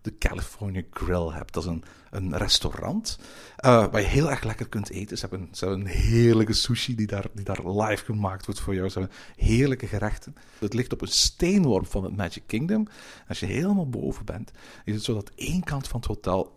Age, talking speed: 50-69, 215 wpm